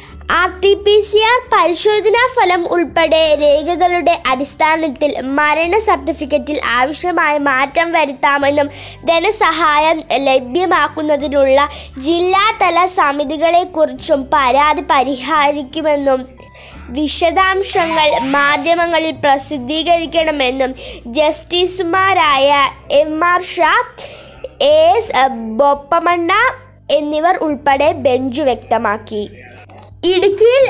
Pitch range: 295-375 Hz